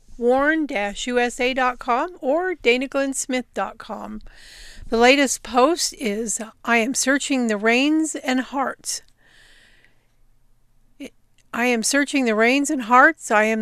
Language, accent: English, American